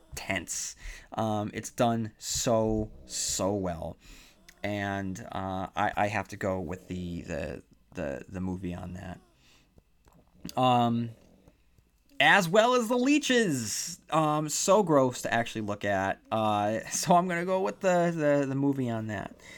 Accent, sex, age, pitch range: American, male, 30-49, 95-135 Hz